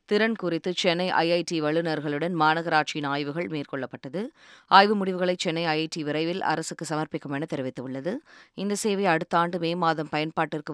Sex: female